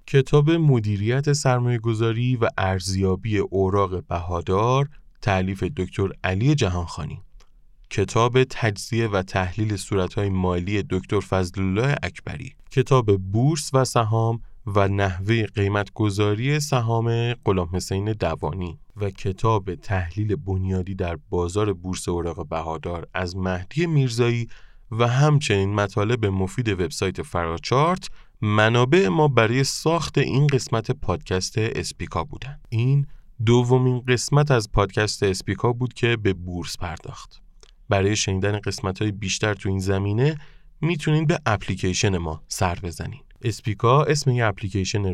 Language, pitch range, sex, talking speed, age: Persian, 95-125 Hz, male, 115 wpm, 20-39